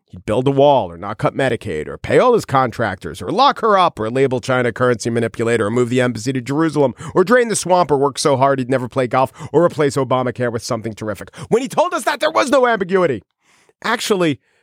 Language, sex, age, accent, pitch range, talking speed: English, male, 40-59, American, 120-175 Hz, 230 wpm